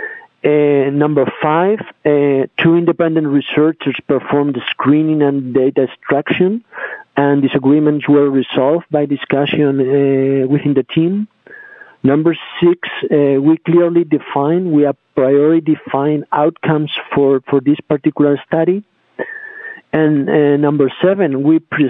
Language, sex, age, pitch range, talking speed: English, male, 50-69, 145-165 Hz, 125 wpm